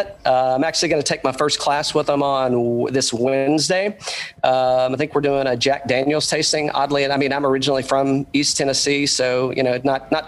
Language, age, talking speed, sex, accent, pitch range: English, 40-59, 230 wpm, male, American, 125-150 Hz